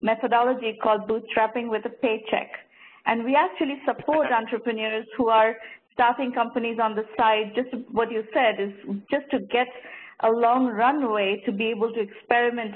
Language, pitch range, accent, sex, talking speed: English, 210-240 Hz, Indian, female, 165 wpm